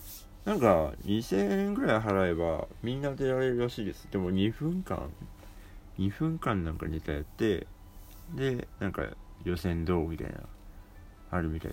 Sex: male